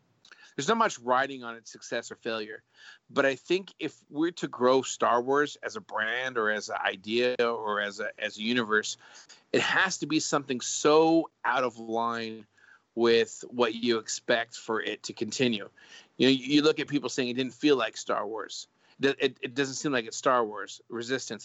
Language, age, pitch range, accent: English, 40-59, 110-140 Hz, American